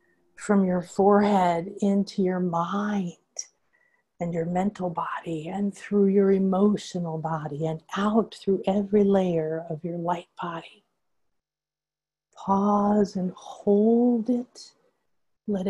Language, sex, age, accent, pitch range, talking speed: English, female, 50-69, American, 165-210 Hz, 110 wpm